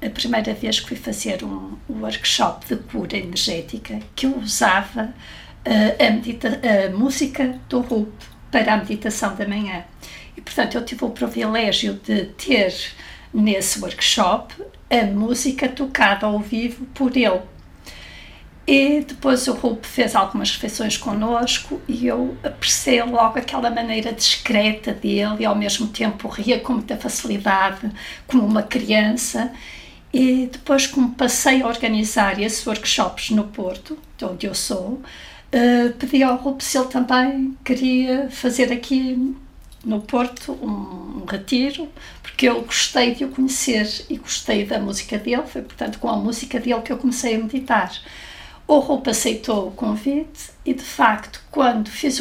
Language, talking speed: Portuguese, 150 wpm